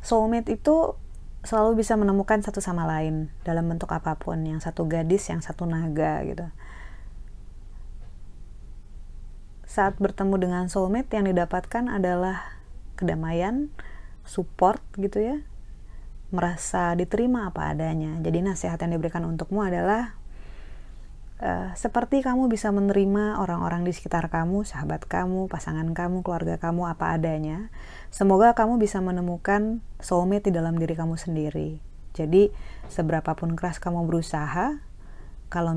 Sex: female